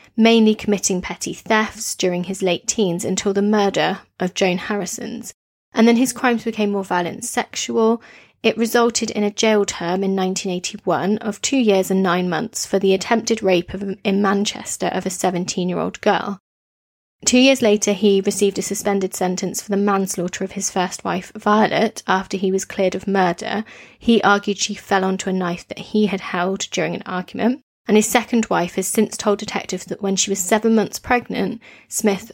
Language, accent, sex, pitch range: English, British, female, 190-225 Hz